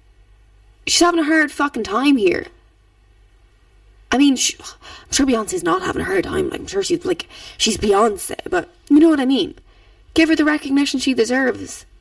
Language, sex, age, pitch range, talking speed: English, female, 20-39, 245-370 Hz, 175 wpm